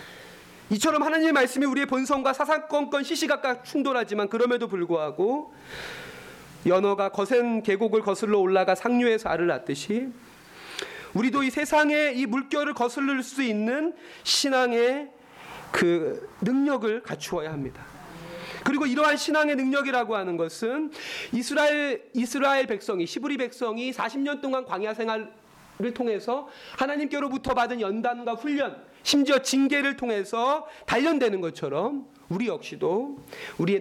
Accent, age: native, 40-59